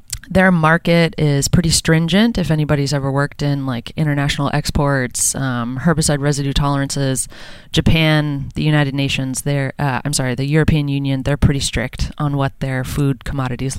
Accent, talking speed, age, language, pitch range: American, 150 wpm, 20-39, English, 135-150 Hz